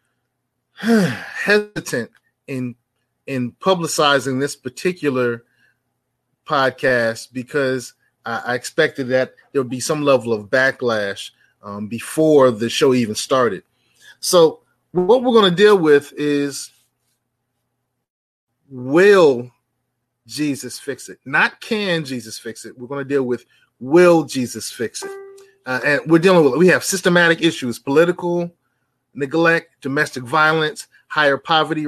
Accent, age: American, 30-49